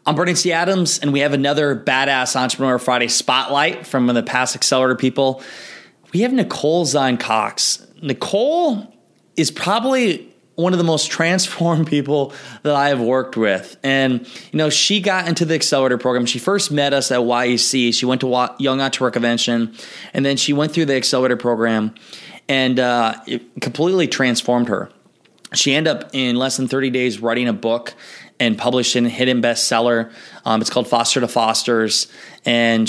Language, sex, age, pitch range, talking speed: English, male, 20-39, 120-145 Hz, 175 wpm